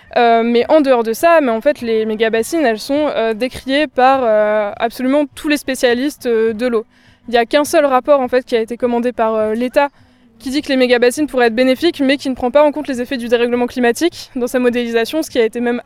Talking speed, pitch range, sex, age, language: 260 wpm, 230-275 Hz, female, 20-39, French